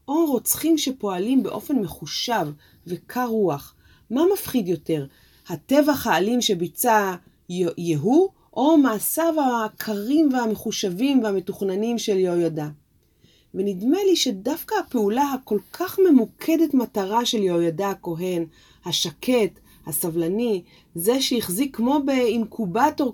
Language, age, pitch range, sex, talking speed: Hebrew, 30-49, 175-240 Hz, female, 100 wpm